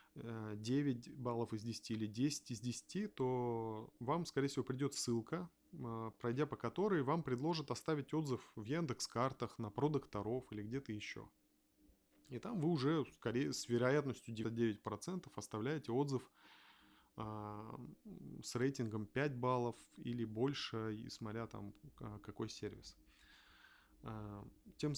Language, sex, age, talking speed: Russian, male, 20-39, 120 wpm